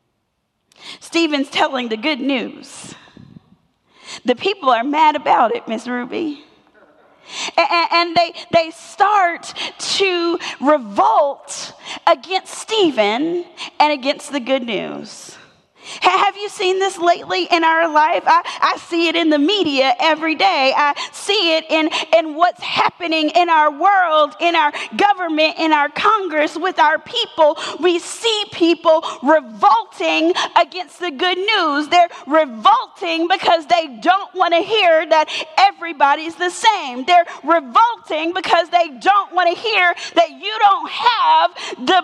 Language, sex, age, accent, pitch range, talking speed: English, female, 30-49, American, 310-375 Hz, 135 wpm